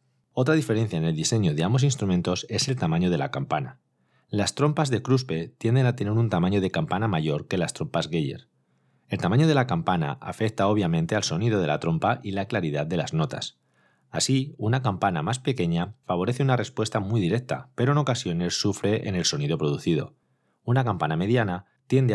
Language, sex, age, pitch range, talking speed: Spanish, male, 30-49, 85-125 Hz, 190 wpm